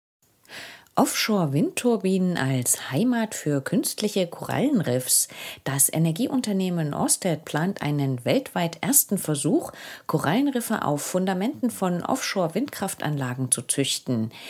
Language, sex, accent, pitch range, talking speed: English, female, German, 135-210 Hz, 85 wpm